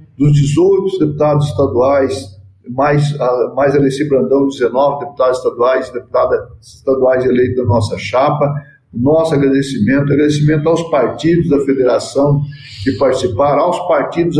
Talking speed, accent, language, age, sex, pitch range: 115 wpm, Brazilian, Portuguese, 50-69, male, 135-160 Hz